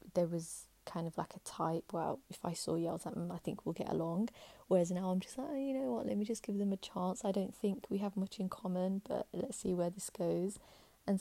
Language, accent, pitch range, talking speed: English, British, 175-210 Hz, 270 wpm